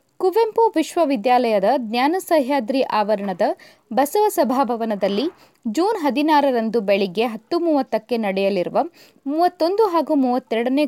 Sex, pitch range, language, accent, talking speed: female, 230-310 Hz, Kannada, native, 85 wpm